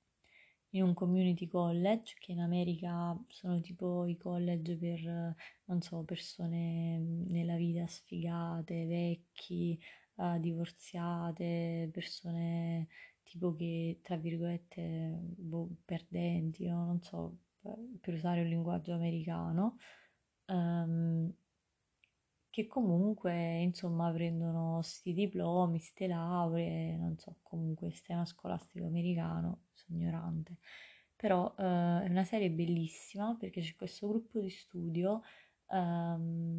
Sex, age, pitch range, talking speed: female, 20-39, 170-180 Hz, 110 wpm